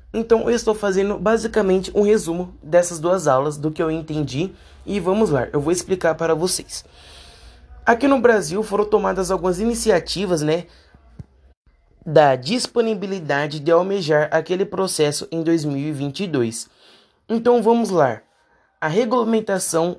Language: Portuguese